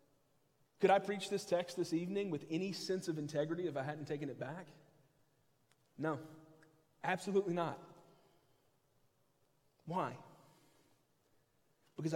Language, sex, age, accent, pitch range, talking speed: English, male, 30-49, American, 145-180 Hz, 115 wpm